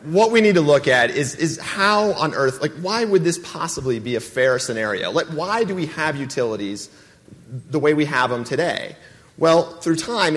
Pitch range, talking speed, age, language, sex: 115-150 Hz, 205 wpm, 30-49, English, male